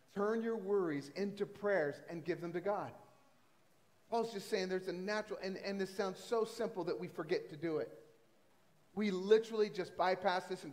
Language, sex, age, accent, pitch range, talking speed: English, male, 40-59, American, 170-205 Hz, 190 wpm